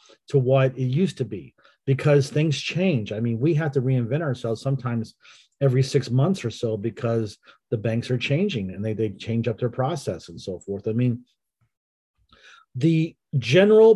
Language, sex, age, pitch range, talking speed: English, male, 40-59, 115-145 Hz, 175 wpm